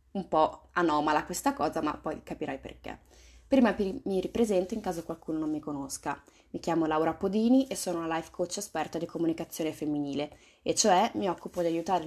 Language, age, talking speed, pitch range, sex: Italian, 20-39, 185 wpm, 160-185 Hz, female